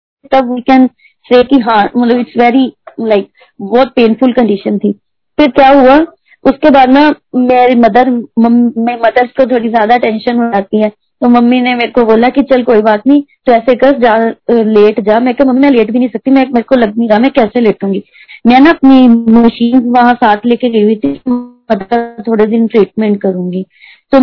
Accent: native